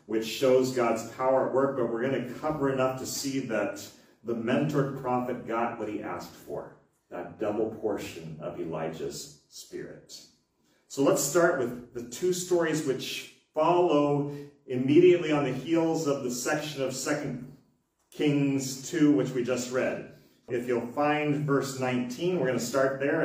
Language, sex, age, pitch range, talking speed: English, male, 40-59, 125-150 Hz, 155 wpm